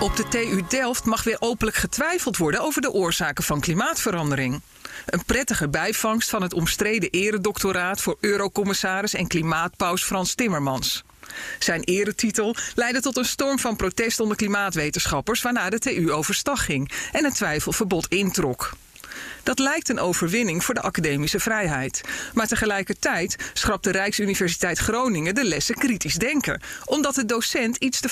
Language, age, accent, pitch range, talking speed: Dutch, 40-59, Dutch, 175-225 Hz, 145 wpm